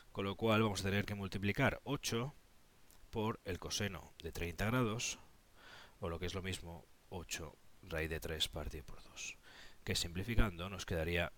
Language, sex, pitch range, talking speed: Spanish, male, 95-135 Hz, 170 wpm